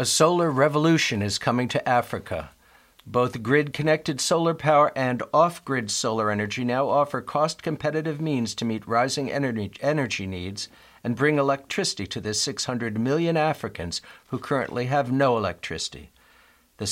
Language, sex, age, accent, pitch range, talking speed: English, male, 50-69, American, 115-150 Hz, 145 wpm